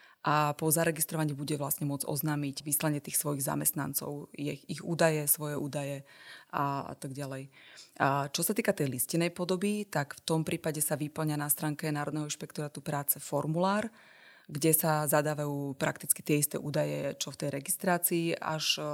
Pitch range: 145-165 Hz